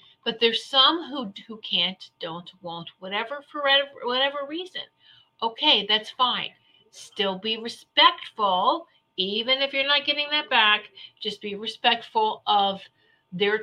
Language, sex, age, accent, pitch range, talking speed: English, female, 50-69, American, 195-255 Hz, 130 wpm